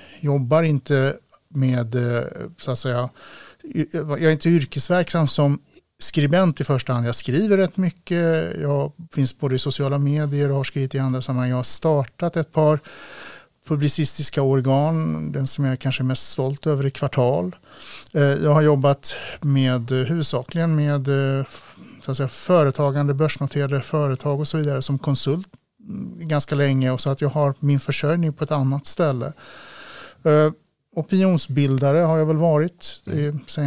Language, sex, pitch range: Swedish, male, 135-155 Hz